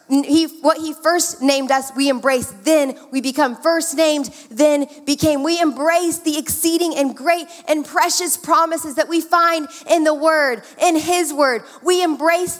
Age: 20-39